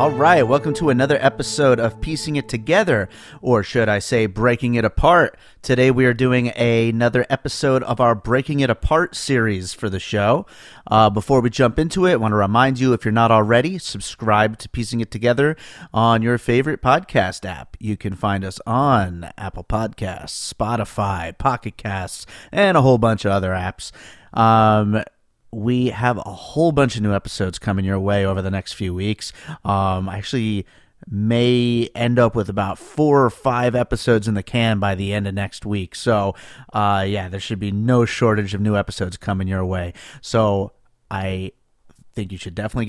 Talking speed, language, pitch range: 185 wpm, English, 100-125 Hz